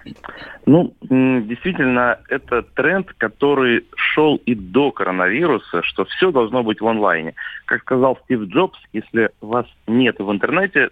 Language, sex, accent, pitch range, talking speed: Russian, male, native, 100-125 Hz, 130 wpm